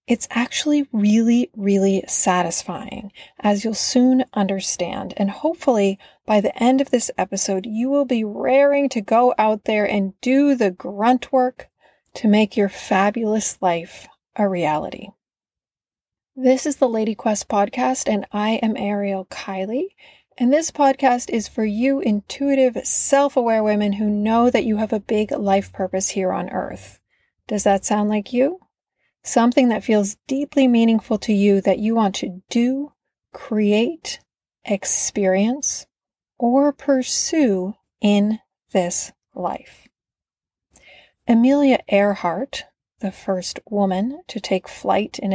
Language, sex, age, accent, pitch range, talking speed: English, female, 30-49, American, 200-265 Hz, 135 wpm